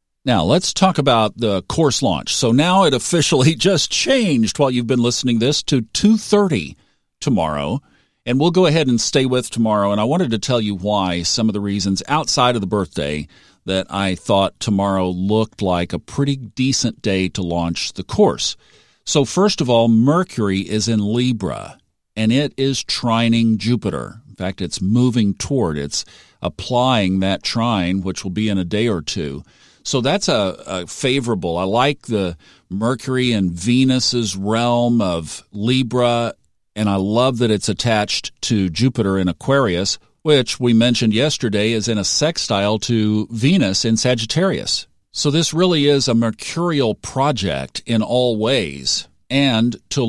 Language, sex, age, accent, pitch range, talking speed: English, male, 50-69, American, 100-130 Hz, 165 wpm